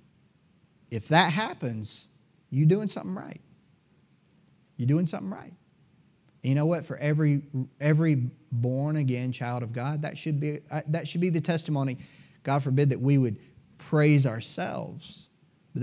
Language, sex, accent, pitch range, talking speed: English, male, American, 135-170 Hz, 145 wpm